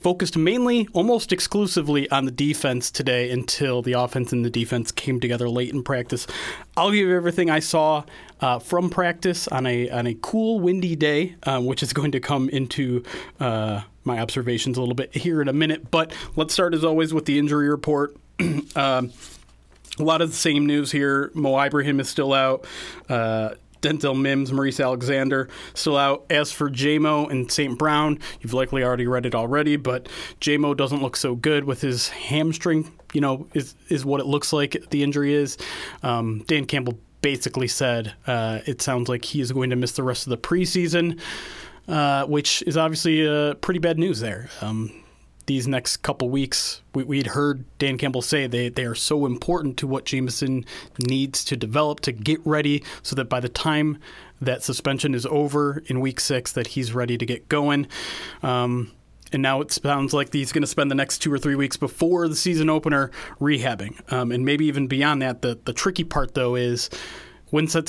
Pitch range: 125-150 Hz